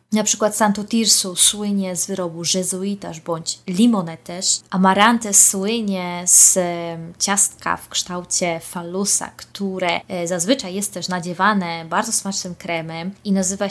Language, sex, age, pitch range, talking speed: Polish, female, 20-39, 175-210 Hz, 120 wpm